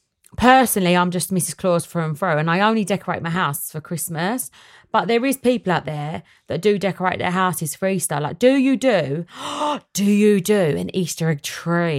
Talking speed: 195 wpm